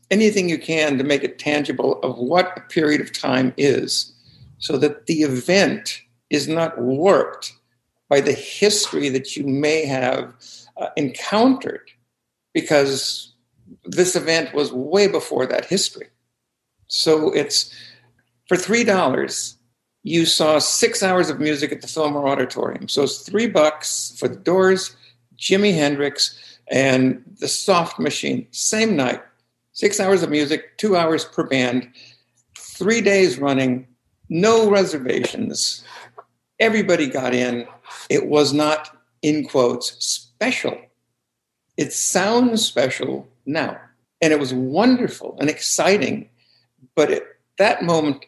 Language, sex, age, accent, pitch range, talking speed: English, male, 60-79, American, 130-180 Hz, 130 wpm